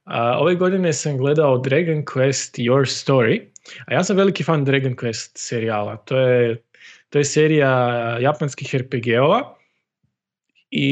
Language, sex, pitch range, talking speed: Croatian, male, 125-150 Hz, 135 wpm